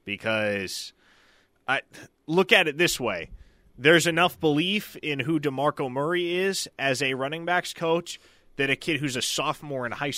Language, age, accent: English, 20-39, American